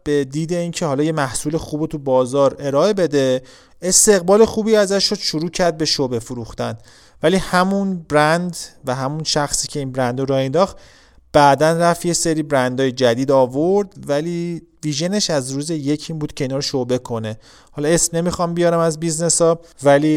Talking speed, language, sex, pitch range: 180 wpm, Persian, male, 130-185 Hz